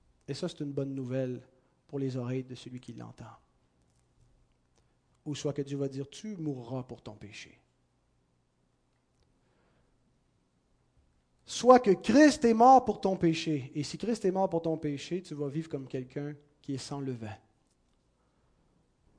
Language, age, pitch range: French, 40-59, 125-165 Hz